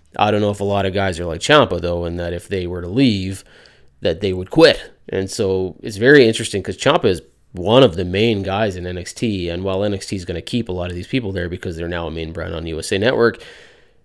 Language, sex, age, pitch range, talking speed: English, male, 30-49, 90-115 Hz, 255 wpm